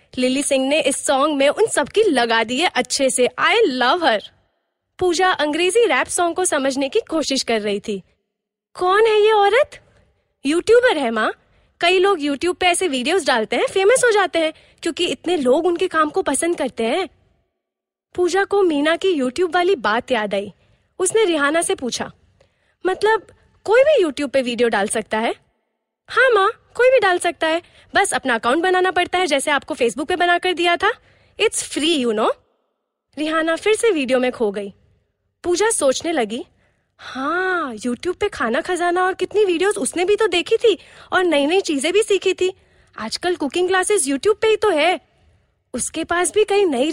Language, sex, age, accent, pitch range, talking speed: Hindi, female, 20-39, native, 280-390 Hz, 185 wpm